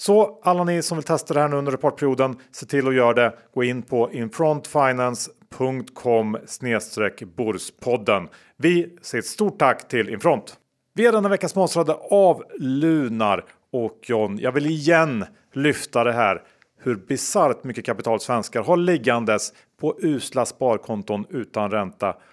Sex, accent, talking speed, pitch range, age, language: male, Norwegian, 145 wpm, 110-160 Hz, 40-59, Swedish